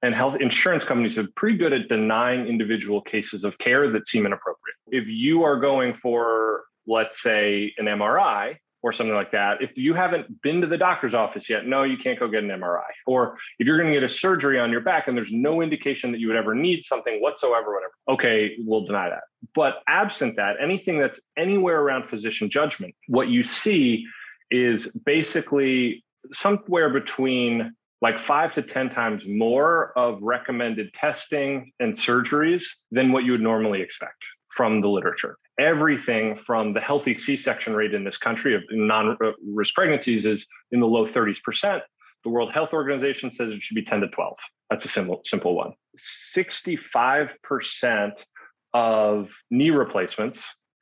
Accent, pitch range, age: American, 110-150 Hz, 30-49